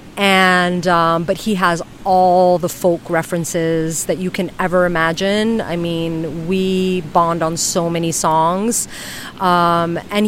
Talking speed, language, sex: 140 wpm, English, female